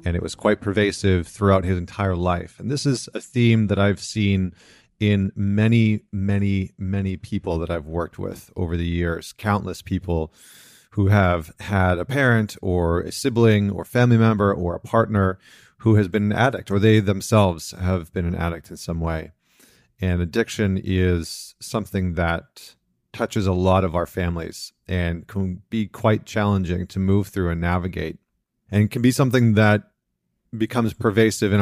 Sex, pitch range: male, 95-110 Hz